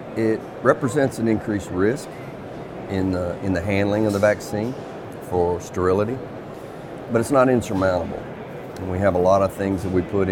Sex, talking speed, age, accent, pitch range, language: male, 170 wpm, 40-59, American, 95-110 Hz, English